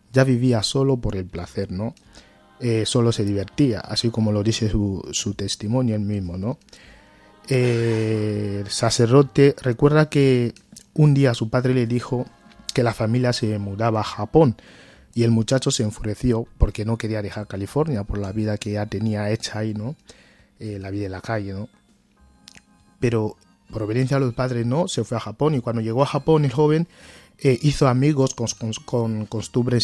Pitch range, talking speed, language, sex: 105-130 Hz, 180 wpm, Spanish, male